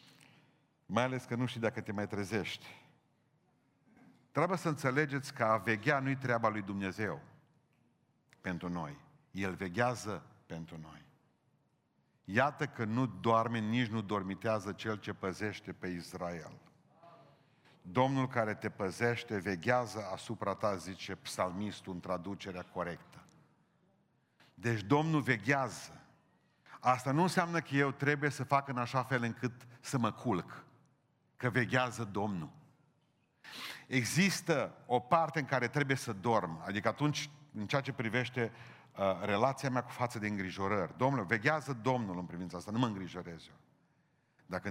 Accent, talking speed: native, 135 wpm